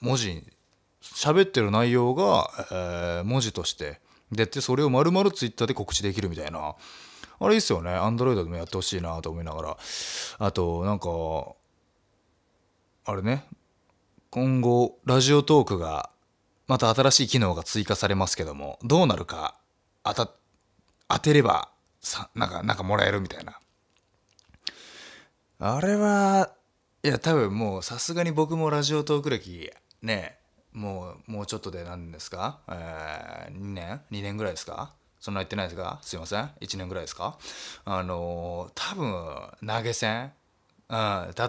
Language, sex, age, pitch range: Japanese, male, 20-39, 90-115 Hz